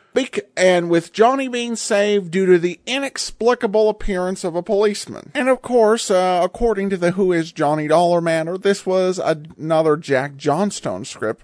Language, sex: English, male